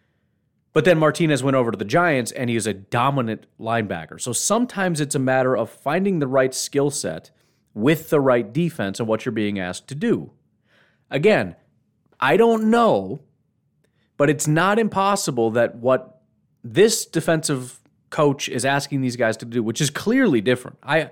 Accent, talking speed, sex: American, 170 wpm, male